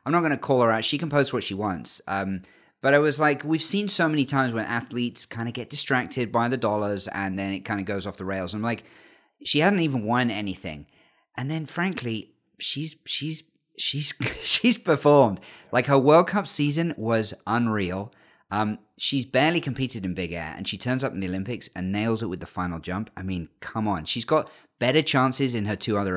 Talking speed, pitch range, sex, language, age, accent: 220 wpm, 105-150 Hz, male, English, 30-49, British